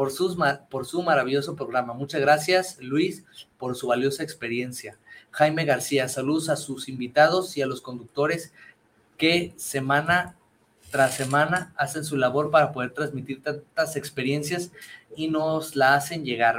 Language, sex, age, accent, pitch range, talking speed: Spanish, male, 20-39, Mexican, 130-160 Hz, 140 wpm